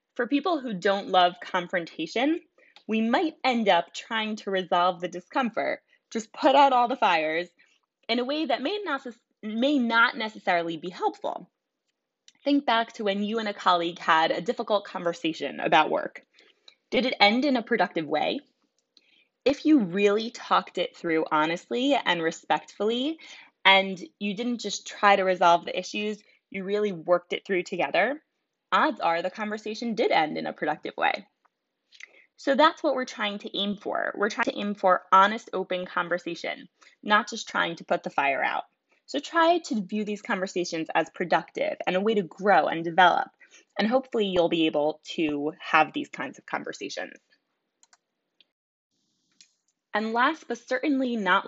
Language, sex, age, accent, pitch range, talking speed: English, female, 20-39, American, 180-260 Hz, 165 wpm